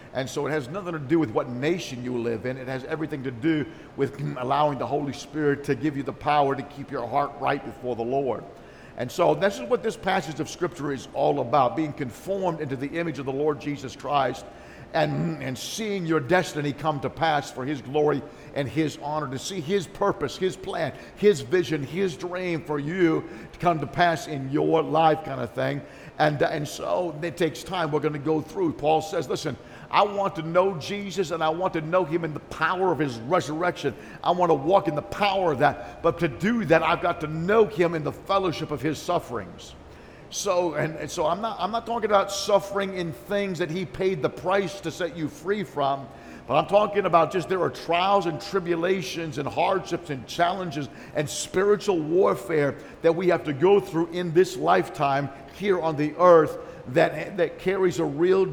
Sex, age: male, 50-69